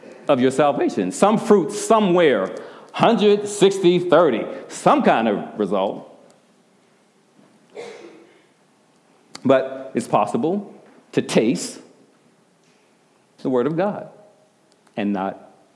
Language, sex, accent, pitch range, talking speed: English, male, American, 135-195 Hz, 90 wpm